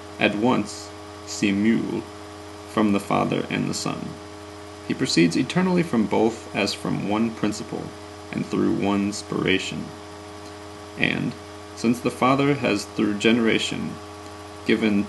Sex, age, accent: male, 30-49, American